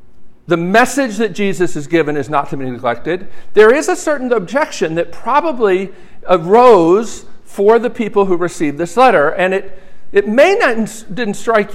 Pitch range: 170-245 Hz